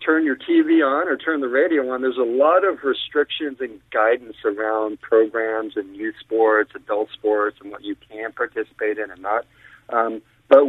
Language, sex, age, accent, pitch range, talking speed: English, male, 50-69, American, 115-145 Hz, 185 wpm